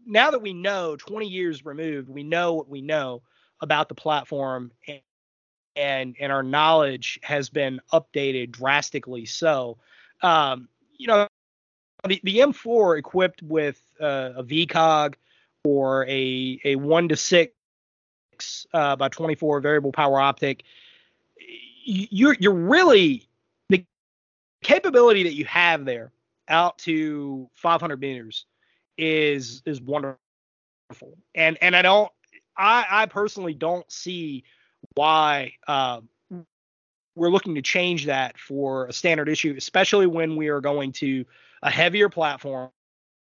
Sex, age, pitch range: male, 30-49, 135-185 Hz